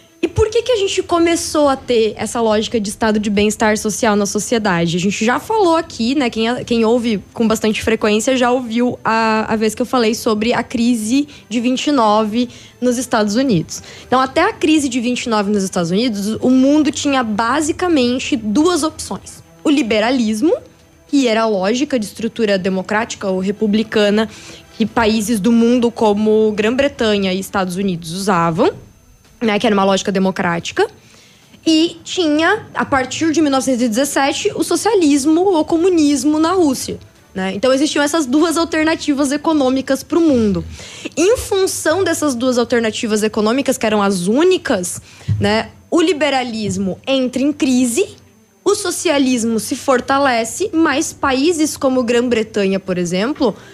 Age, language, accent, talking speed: 20-39, Portuguese, Brazilian, 150 wpm